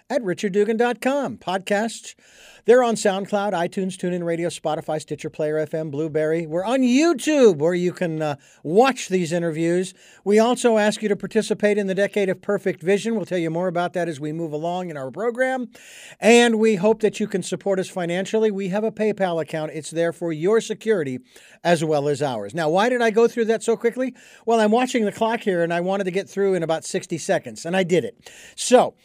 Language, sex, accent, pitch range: English, male, American, 165-220 Hz